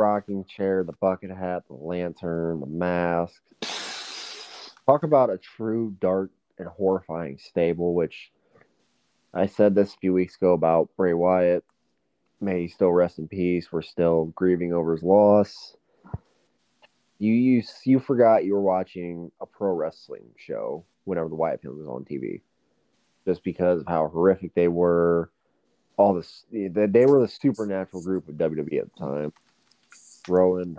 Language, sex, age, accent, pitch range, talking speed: English, male, 20-39, American, 85-105 Hz, 150 wpm